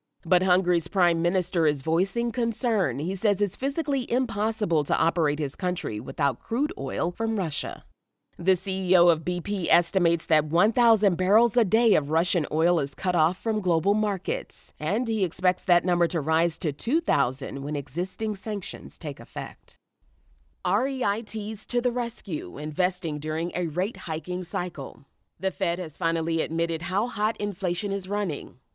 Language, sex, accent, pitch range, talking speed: English, female, American, 165-210 Hz, 150 wpm